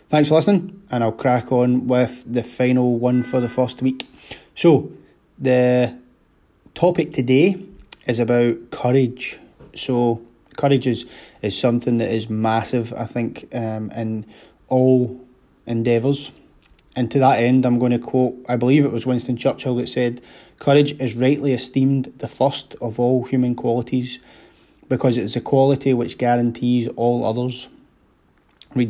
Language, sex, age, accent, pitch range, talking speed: English, male, 20-39, British, 120-130 Hz, 145 wpm